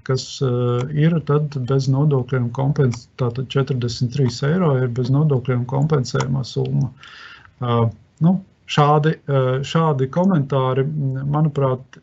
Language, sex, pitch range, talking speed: English, male, 120-140 Hz, 155 wpm